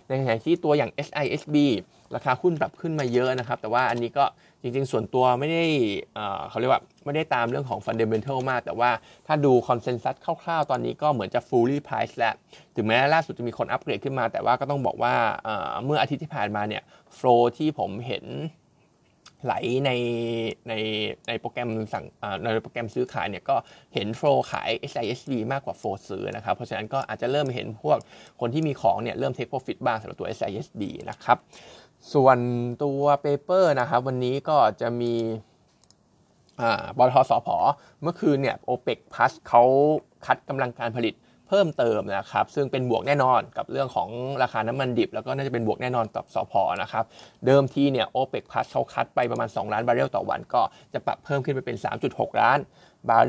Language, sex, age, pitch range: Thai, male, 20-39, 115-145 Hz